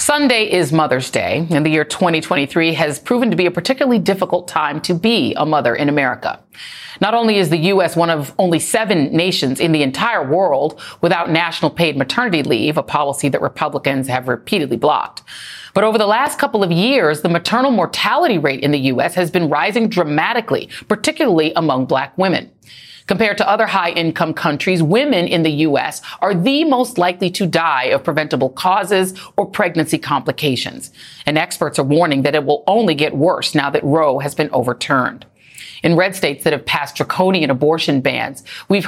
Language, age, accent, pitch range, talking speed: English, 40-59, American, 155-195 Hz, 180 wpm